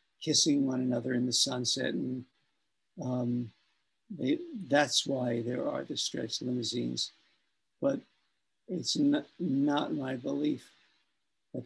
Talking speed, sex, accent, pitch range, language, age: 120 wpm, male, American, 135-165 Hz, English, 50-69